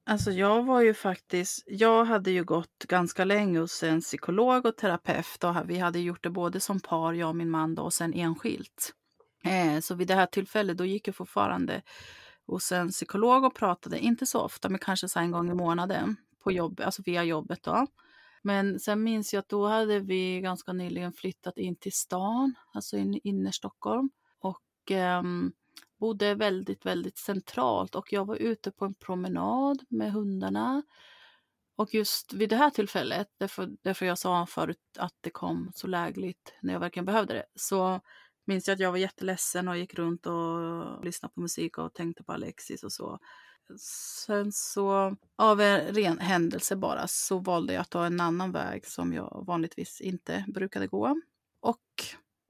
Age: 30-49